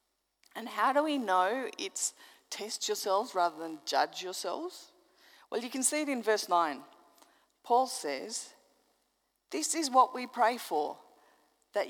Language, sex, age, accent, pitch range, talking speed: English, female, 40-59, Australian, 205-335 Hz, 145 wpm